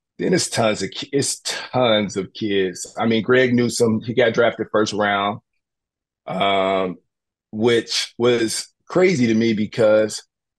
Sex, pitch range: male, 100-125 Hz